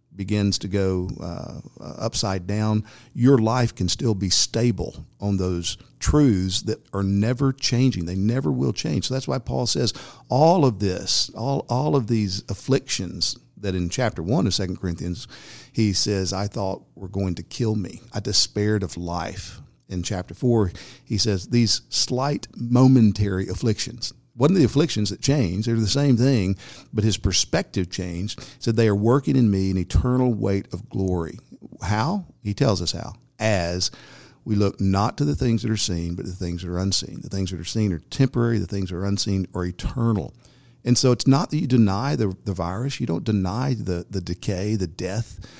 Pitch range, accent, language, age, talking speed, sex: 95-125 Hz, American, English, 50-69, 190 wpm, male